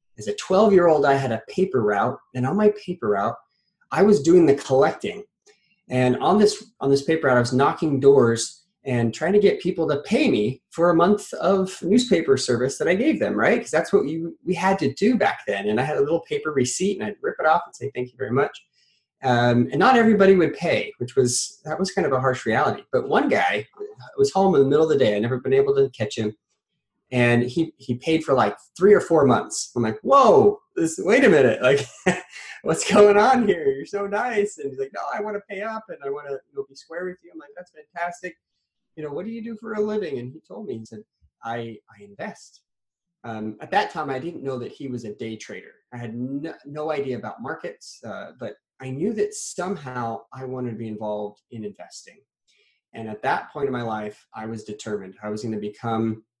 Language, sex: English, male